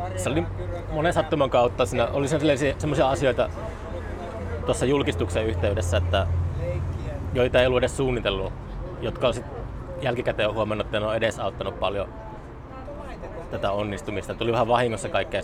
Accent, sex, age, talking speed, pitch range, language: native, male, 30-49, 120 wpm, 100-125 Hz, Finnish